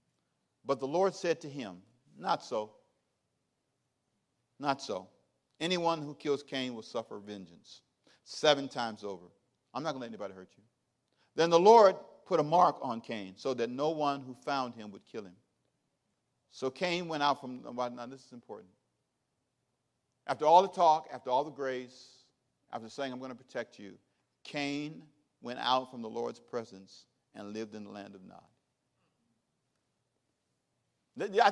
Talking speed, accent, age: 160 wpm, American, 50-69